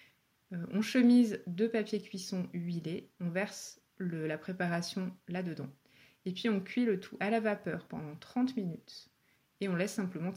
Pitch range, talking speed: 180-215 Hz, 155 wpm